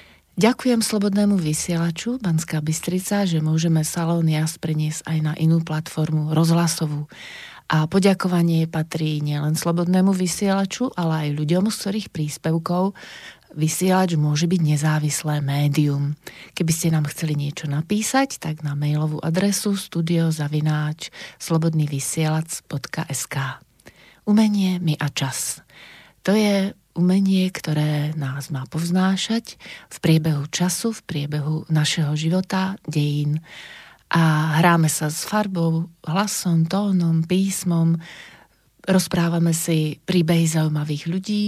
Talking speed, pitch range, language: 110 wpm, 155-185 Hz, Slovak